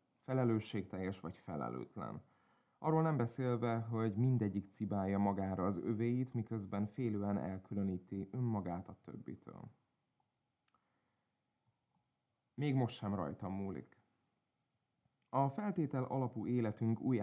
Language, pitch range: Hungarian, 100-125 Hz